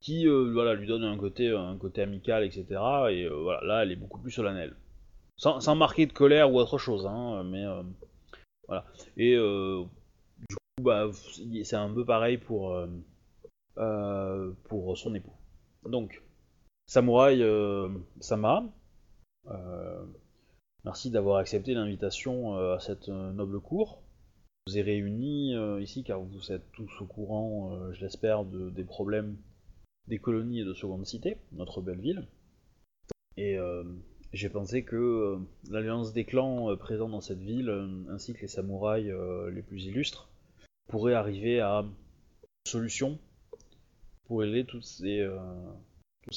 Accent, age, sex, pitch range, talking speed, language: French, 20-39, male, 95-115 Hz, 155 wpm, French